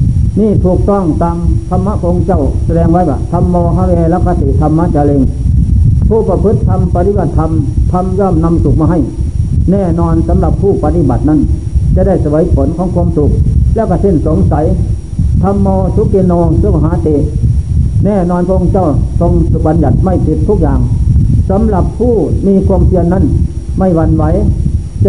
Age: 60-79